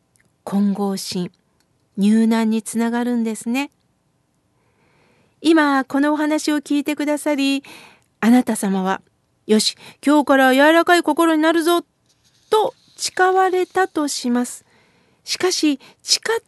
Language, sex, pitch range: Japanese, female, 235-320 Hz